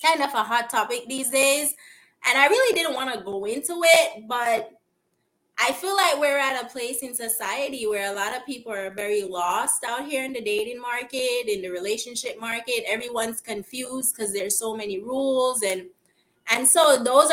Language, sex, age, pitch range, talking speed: English, female, 20-39, 210-275 Hz, 190 wpm